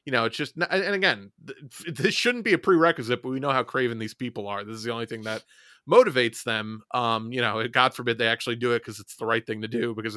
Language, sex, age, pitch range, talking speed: English, male, 30-49, 115-150 Hz, 260 wpm